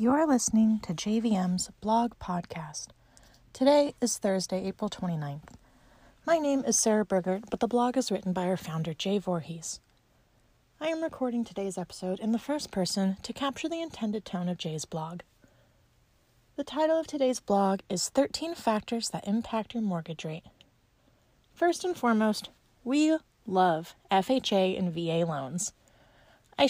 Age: 30-49